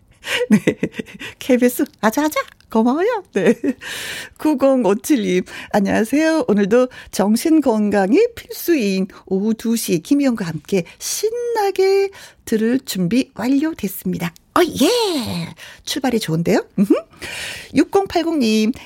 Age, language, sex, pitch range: 40-59, Korean, female, 180-275 Hz